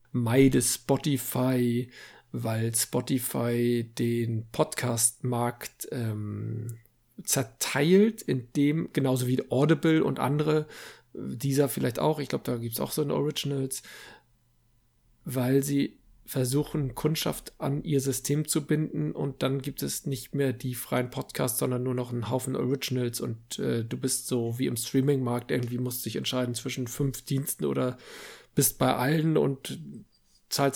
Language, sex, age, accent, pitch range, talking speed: German, male, 50-69, German, 120-145 Hz, 140 wpm